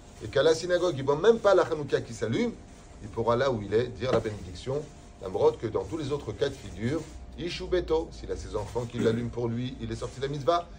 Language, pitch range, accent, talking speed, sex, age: French, 110-150 Hz, French, 260 wpm, male, 30-49